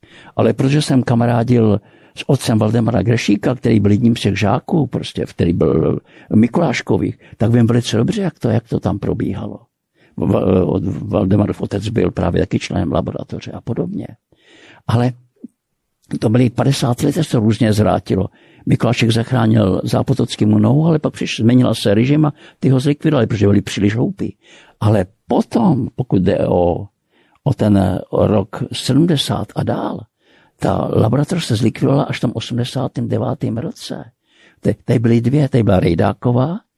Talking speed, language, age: 145 wpm, Slovak, 50-69